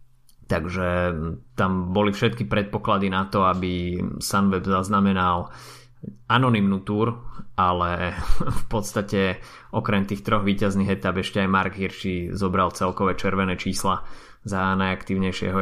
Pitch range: 95-105 Hz